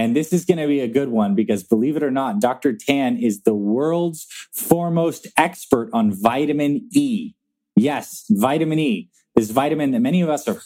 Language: English